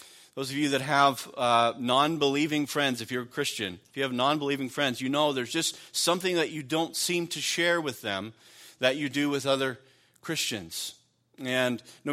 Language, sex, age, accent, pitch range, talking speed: English, male, 40-59, American, 125-155 Hz, 190 wpm